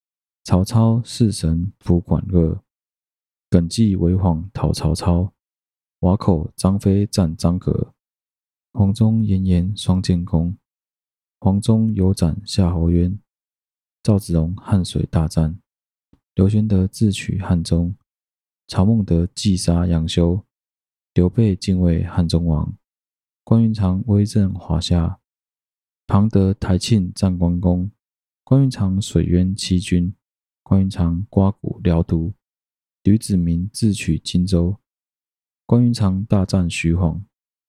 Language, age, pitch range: Chinese, 20-39, 80-100 Hz